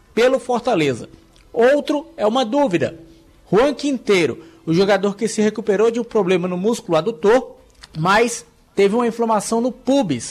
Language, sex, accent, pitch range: Portuguese, male, Brazilian, 175-225 Hz